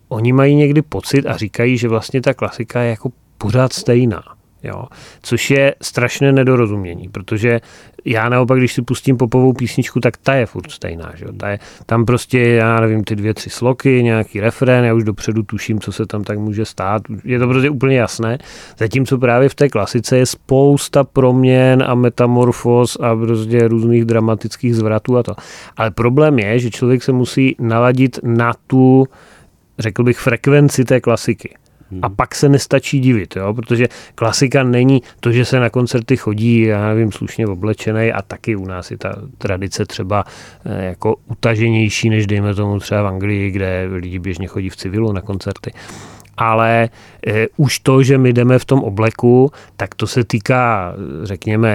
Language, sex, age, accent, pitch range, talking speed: Czech, male, 30-49, native, 105-125 Hz, 175 wpm